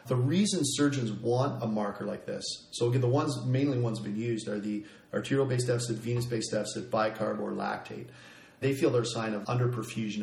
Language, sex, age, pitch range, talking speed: English, male, 40-59, 110-130 Hz, 190 wpm